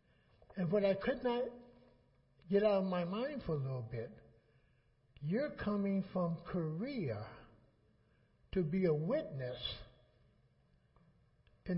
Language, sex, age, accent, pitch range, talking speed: English, male, 60-79, American, 135-205 Hz, 115 wpm